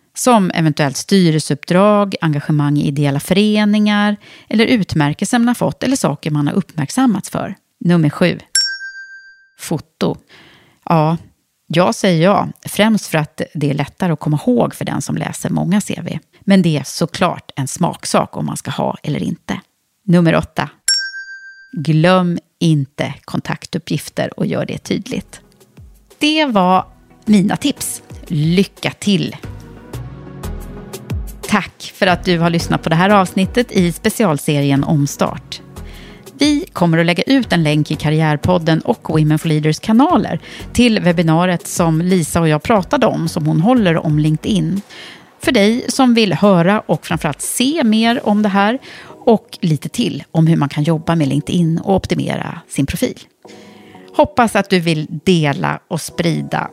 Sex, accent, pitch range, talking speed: female, native, 155-215 Hz, 150 wpm